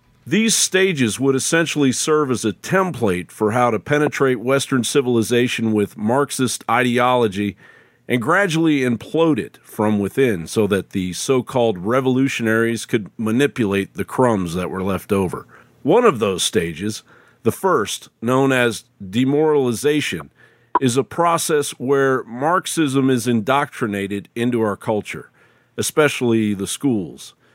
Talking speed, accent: 130 wpm, American